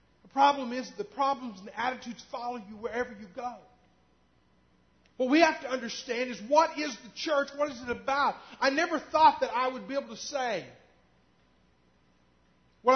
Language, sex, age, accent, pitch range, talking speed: English, male, 40-59, American, 220-280 Hz, 170 wpm